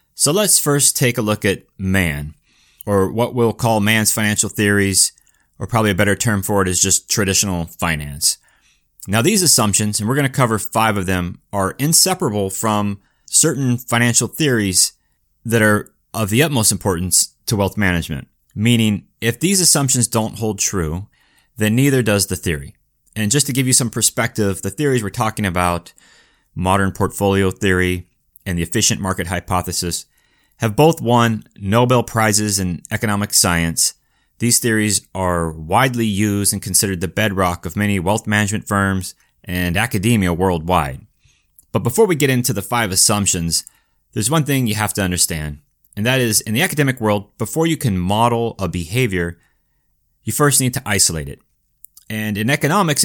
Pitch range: 95-120 Hz